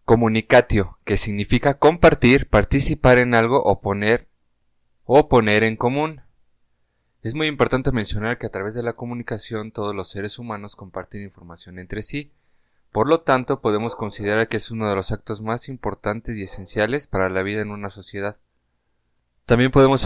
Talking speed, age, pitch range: 160 wpm, 30-49, 100-120 Hz